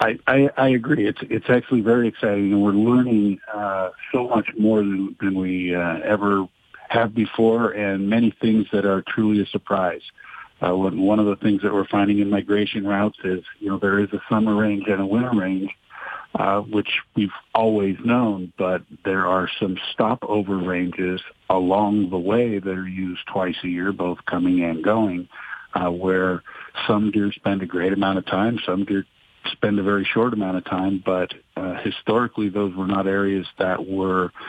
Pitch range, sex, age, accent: 95-105 Hz, male, 50-69, American